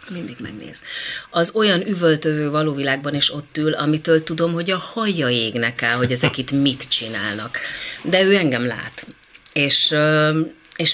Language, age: Hungarian, 30-49